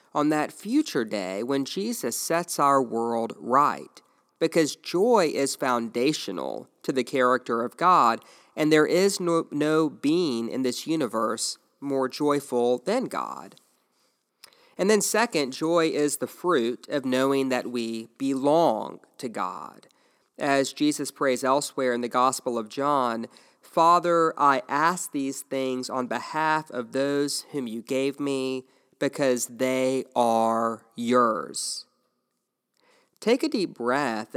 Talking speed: 135 wpm